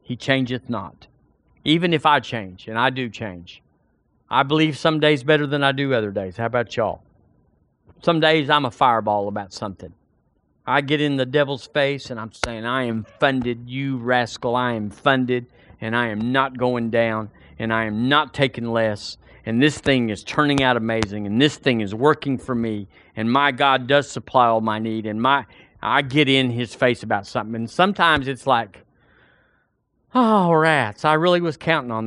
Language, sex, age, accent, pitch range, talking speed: English, male, 40-59, American, 115-155 Hz, 190 wpm